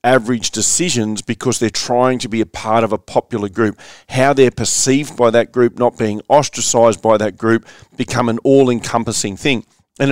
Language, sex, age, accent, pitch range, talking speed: English, male, 40-59, Australian, 110-130 Hz, 185 wpm